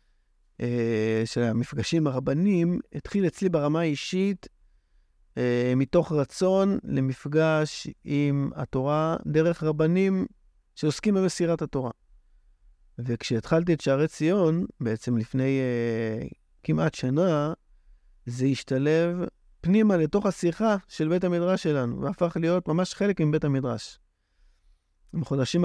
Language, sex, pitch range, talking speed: Hebrew, male, 115-160 Hz, 95 wpm